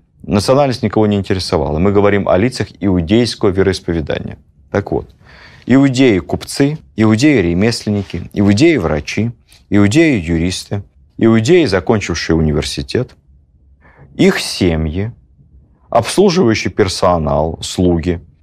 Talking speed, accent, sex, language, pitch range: 80 wpm, native, male, Russian, 75-110 Hz